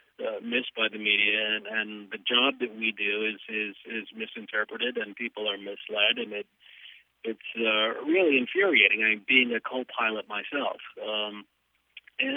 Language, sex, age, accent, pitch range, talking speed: English, male, 40-59, American, 110-130 Hz, 165 wpm